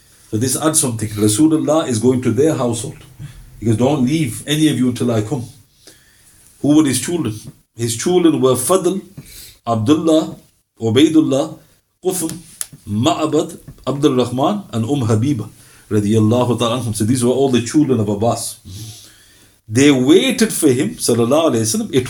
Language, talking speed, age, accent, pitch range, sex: English, 140 wpm, 50-69, Indian, 120-180 Hz, male